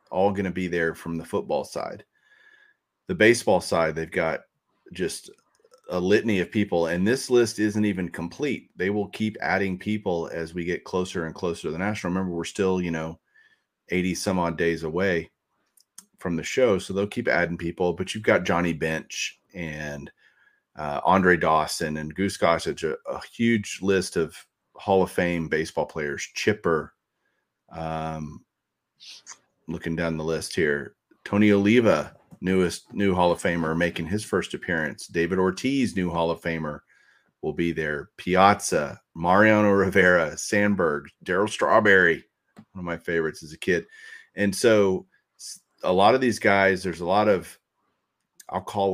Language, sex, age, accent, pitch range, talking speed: English, male, 30-49, American, 85-105 Hz, 160 wpm